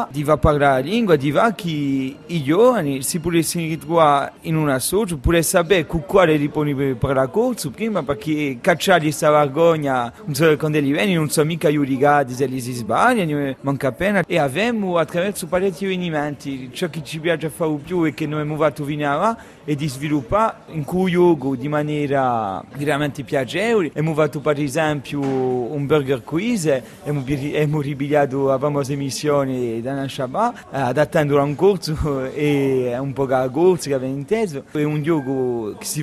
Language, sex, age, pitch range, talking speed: French, male, 40-59, 140-165 Hz, 165 wpm